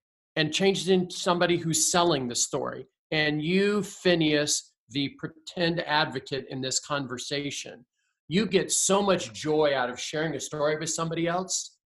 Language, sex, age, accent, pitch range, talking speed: English, male, 40-59, American, 150-185 Hz, 155 wpm